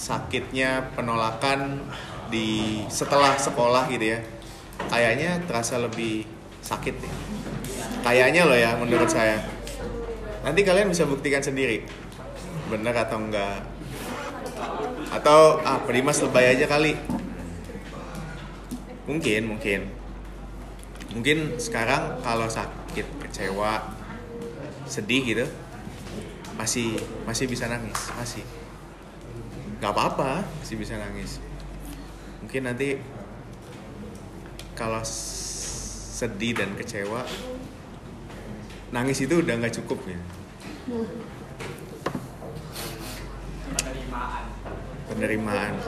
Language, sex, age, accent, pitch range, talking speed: Indonesian, male, 30-49, native, 110-140 Hz, 80 wpm